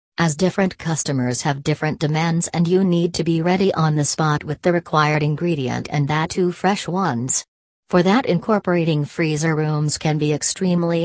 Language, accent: English, American